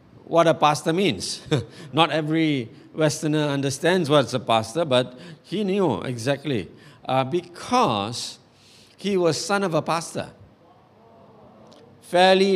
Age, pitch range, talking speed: 50-69, 125-185 Hz, 115 wpm